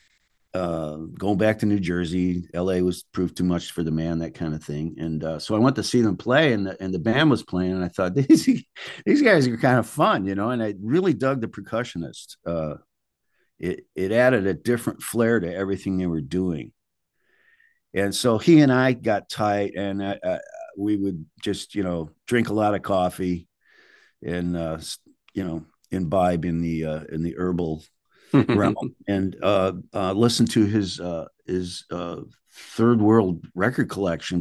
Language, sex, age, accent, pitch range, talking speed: English, male, 50-69, American, 85-110 Hz, 190 wpm